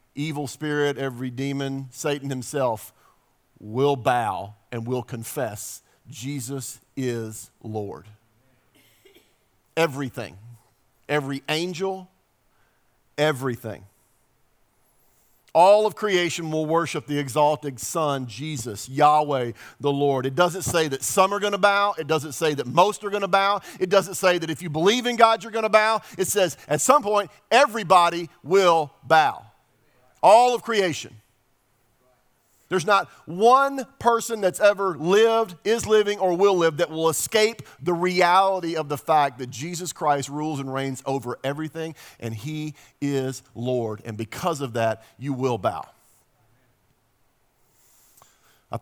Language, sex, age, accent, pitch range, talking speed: English, male, 50-69, American, 125-175 Hz, 135 wpm